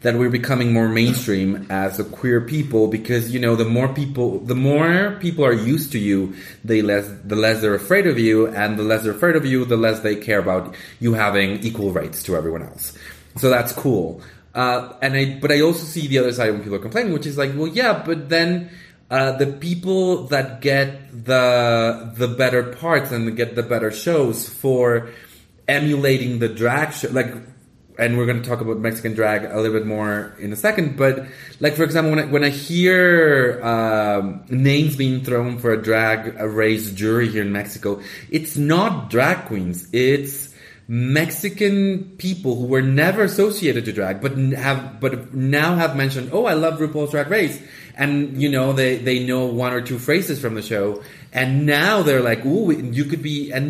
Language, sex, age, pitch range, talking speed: English, male, 30-49, 115-150 Hz, 195 wpm